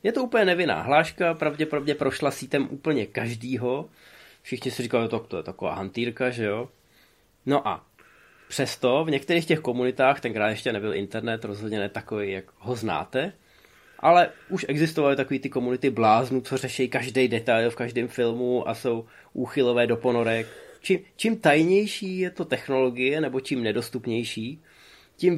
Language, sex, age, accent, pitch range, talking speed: Czech, male, 20-39, native, 120-155 Hz, 160 wpm